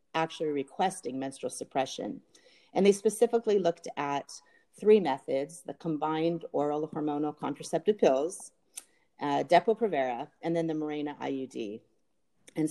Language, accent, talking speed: English, American, 125 wpm